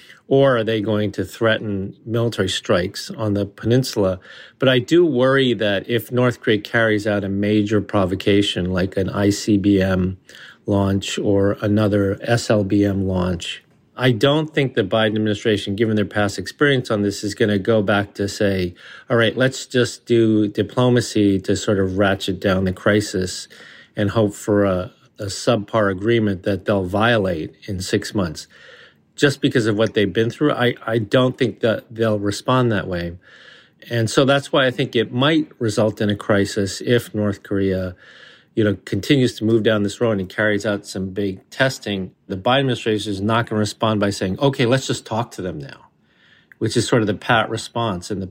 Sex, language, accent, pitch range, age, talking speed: male, English, American, 100-120 Hz, 40-59, 185 wpm